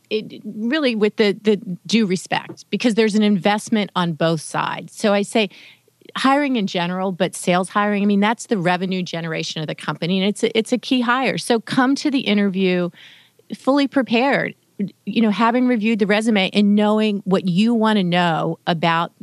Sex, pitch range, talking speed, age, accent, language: female, 175-210 Hz, 180 wpm, 40-59, American, English